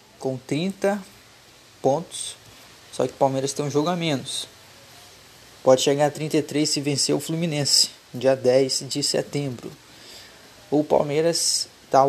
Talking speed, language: 135 wpm, Portuguese